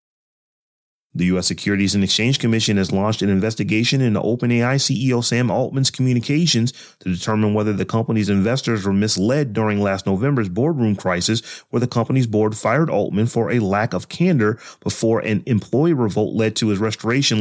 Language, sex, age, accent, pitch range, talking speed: English, male, 30-49, American, 105-125 Hz, 165 wpm